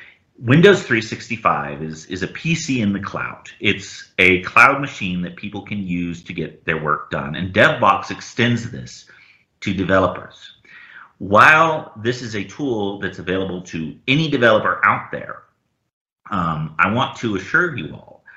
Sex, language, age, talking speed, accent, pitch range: male, English, 40-59, 155 wpm, American, 85-100 Hz